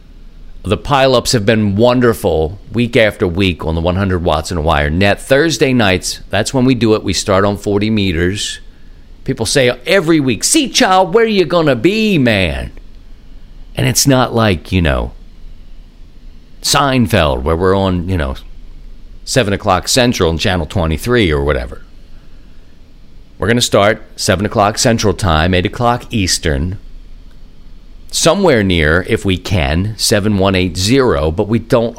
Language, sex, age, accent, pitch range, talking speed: English, male, 50-69, American, 80-115 Hz, 150 wpm